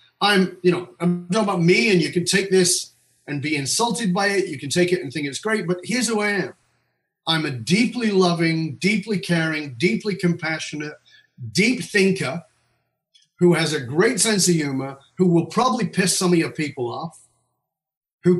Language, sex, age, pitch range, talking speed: English, male, 40-59, 155-190 Hz, 185 wpm